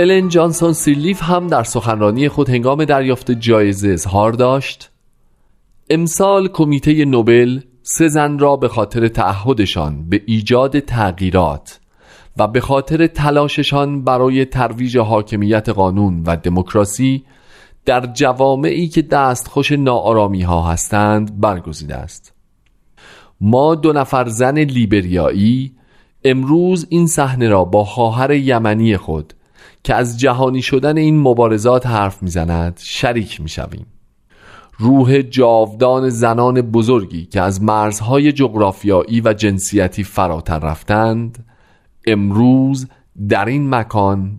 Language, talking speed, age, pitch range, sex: Persian, 110 wpm, 40-59, 105-135 Hz, male